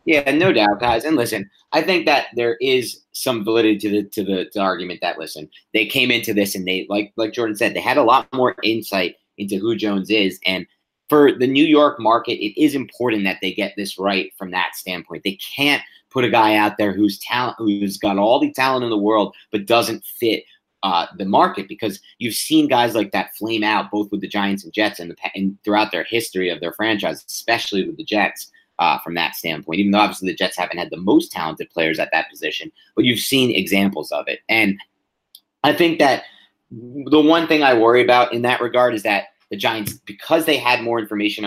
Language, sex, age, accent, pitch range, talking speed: English, male, 30-49, American, 100-125 Hz, 225 wpm